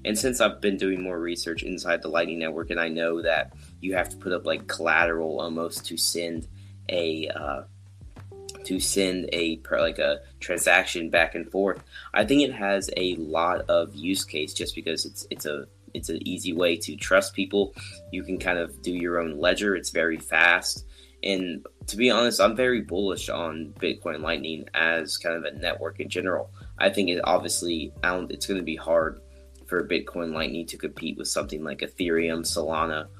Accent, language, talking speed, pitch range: American, English, 190 wpm, 80-100 Hz